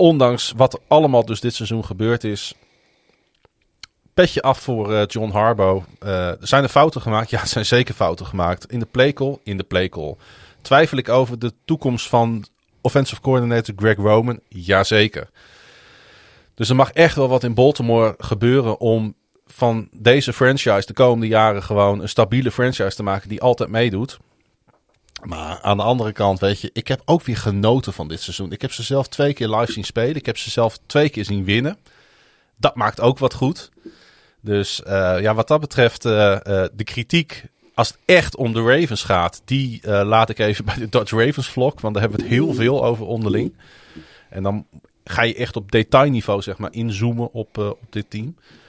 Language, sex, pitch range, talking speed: Dutch, male, 105-125 Hz, 190 wpm